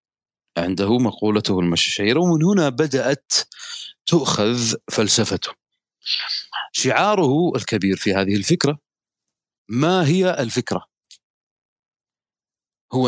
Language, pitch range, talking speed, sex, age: Arabic, 105-145 Hz, 80 wpm, male, 40-59